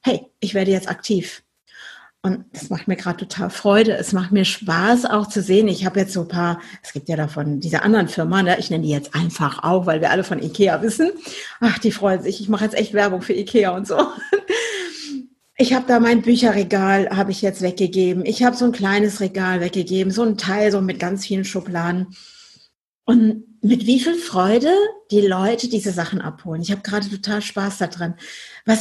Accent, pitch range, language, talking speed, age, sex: German, 185-235 Hz, German, 205 wpm, 50-69, female